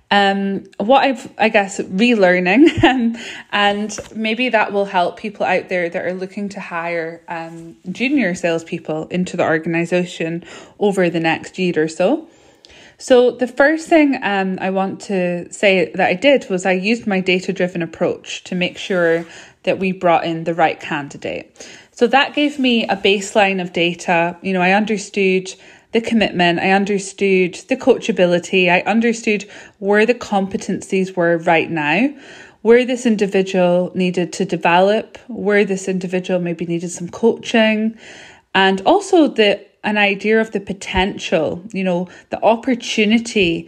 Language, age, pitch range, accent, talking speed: English, 20-39, 175-220 Hz, British, 155 wpm